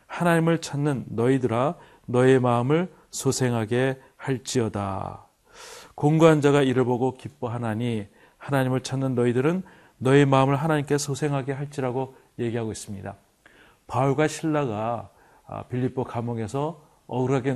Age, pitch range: 40-59, 120-145 Hz